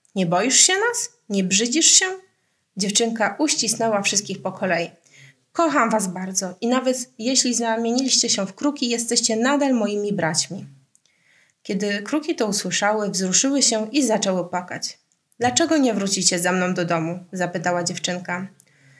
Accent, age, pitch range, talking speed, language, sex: native, 20-39, 180-250 Hz, 140 wpm, Polish, female